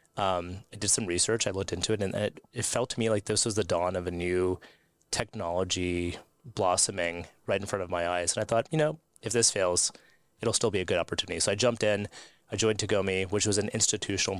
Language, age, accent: English, 30-49, American